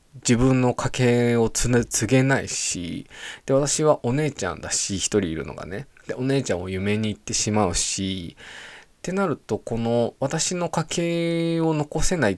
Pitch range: 100-140 Hz